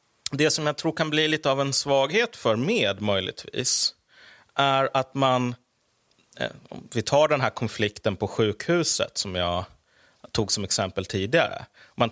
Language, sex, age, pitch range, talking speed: English, male, 30-49, 100-130 Hz, 155 wpm